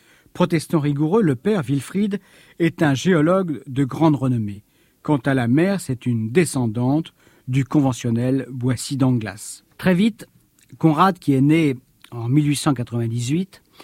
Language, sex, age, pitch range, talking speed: French, male, 50-69, 130-160 Hz, 130 wpm